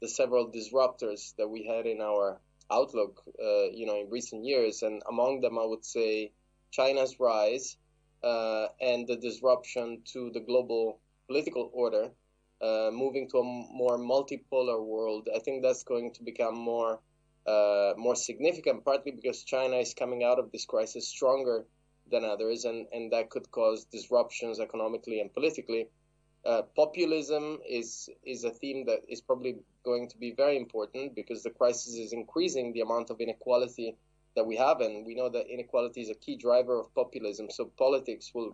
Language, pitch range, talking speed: English, 115-135 Hz, 170 wpm